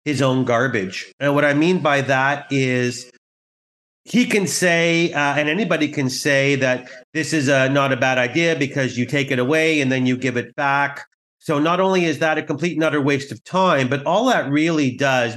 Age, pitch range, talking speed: 40-59, 130-165 Hz, 205 wpm